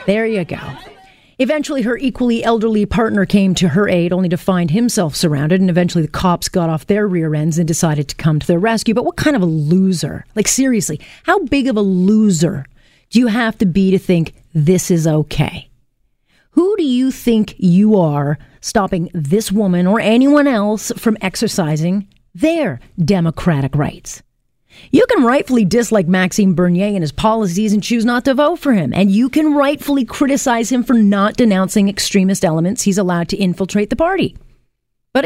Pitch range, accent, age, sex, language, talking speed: 175-225 Hz, American, 40-59, female, English, 180 wpm